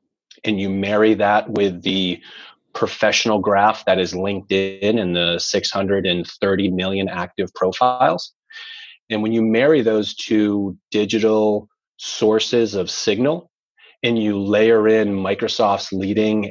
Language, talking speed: English, 120 wpm